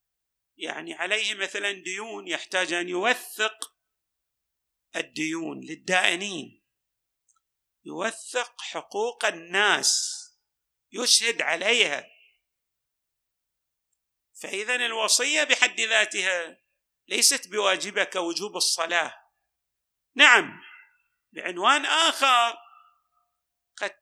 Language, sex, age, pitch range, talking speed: Arabic, male, 50-69, 205-325 Hz, 65 wpm